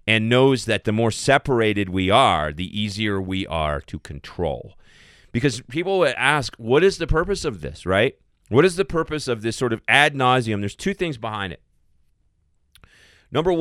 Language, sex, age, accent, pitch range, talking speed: English, male, 30-49, American, 90-120 Hz, 175 wpm